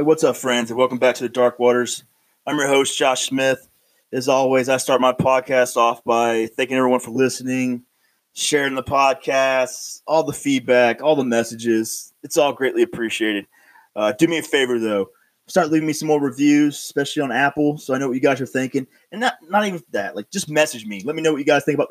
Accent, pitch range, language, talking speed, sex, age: American, 125-150 Hz, English, 220 wpm, male, 20-39